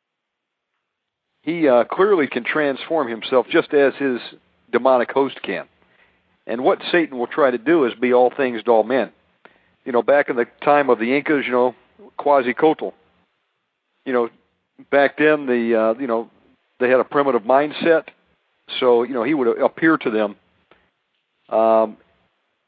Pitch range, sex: 115-145 Hz, male